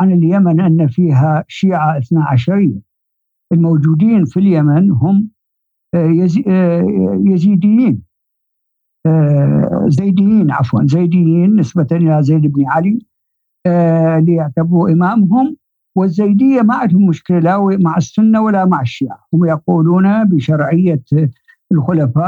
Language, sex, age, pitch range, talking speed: Arabic, male, 60-79, 155-200 Hz, 95 wpm